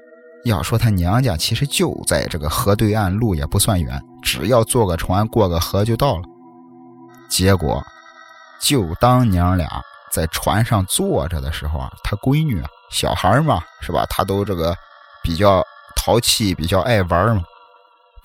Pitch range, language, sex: 90-135 Hz, Chinese, male